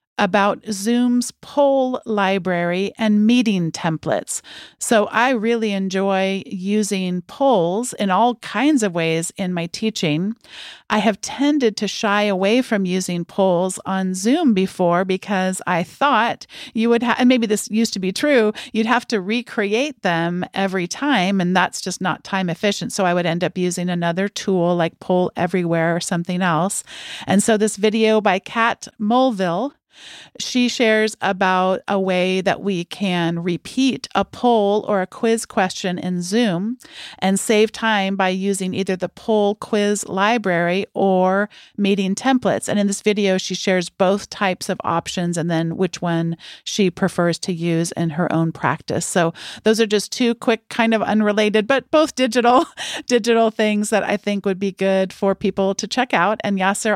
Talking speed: 165 wpm